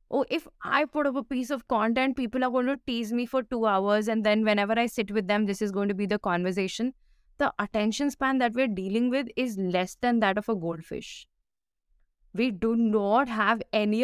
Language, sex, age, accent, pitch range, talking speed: English, female, 20-39, Indian, 205-270 Hz, 220 wpm